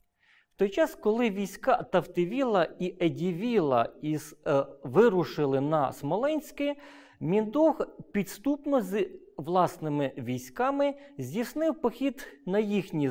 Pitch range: 170-275 Hz